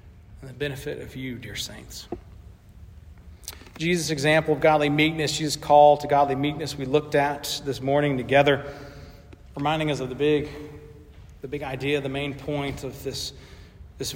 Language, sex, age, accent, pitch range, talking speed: English, male, 40-59, American, 115-145 Hz, 155 wpm